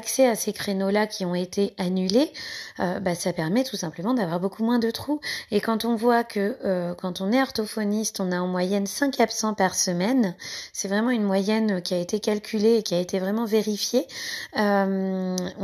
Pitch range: 190-250 Hz